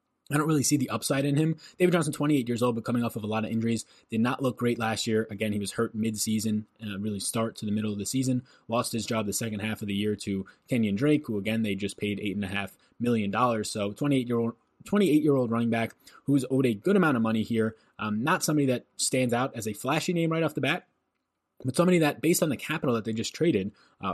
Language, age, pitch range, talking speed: English, 20-39, 100-125 Hz, 250 wpm